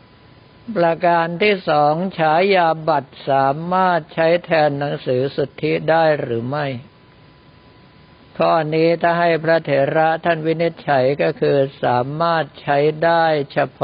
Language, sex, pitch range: Thai, male, 135-165 Hz